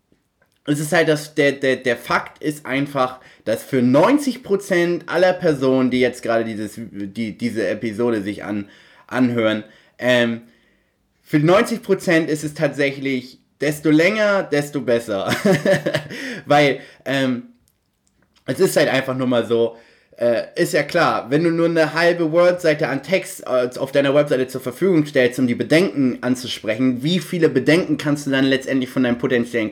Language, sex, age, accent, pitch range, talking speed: German, male, 30-49, German, 125-170 Hz, 150 wpm